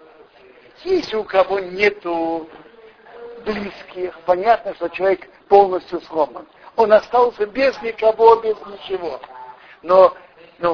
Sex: male